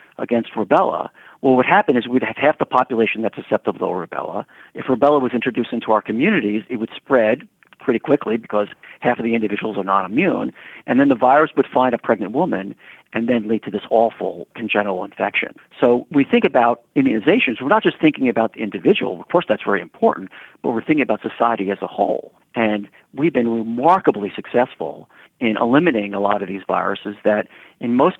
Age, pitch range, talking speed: 50-69, 110-150 Hz, 200 wpm